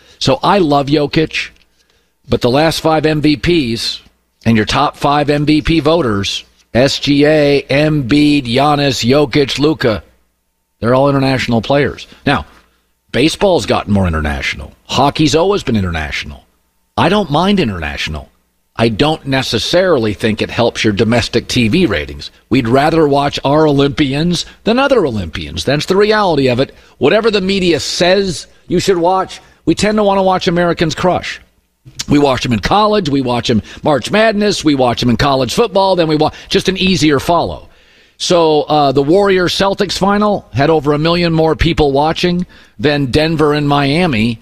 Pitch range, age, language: 120-165 Hz, 50-69, English